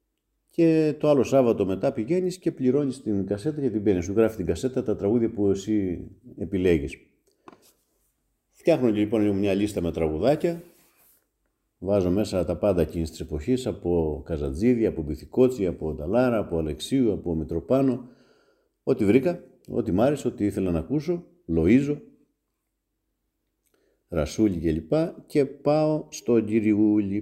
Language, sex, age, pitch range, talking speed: Greek, male, 50-69, 95-135 Hz, 135 wpm